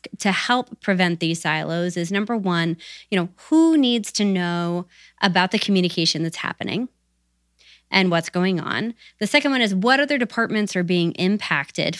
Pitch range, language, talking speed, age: 175-225 Hz, English, 165 wpm, 20-39